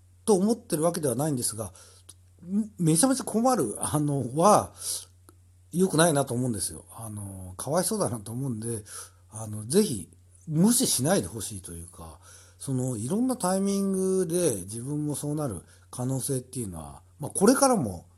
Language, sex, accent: Japanese, male, native